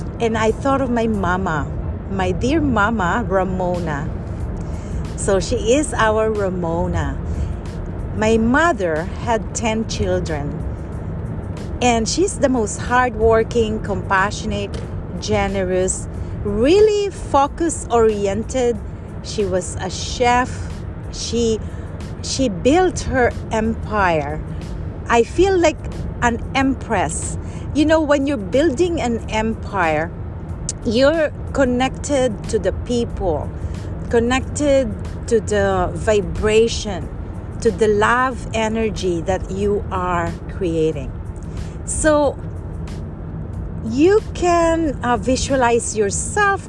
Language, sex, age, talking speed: English, female, 40-59, 95 wpm